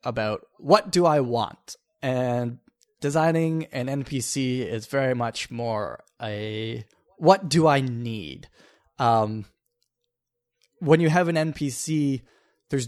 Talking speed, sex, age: 115 wpm, male, 20-39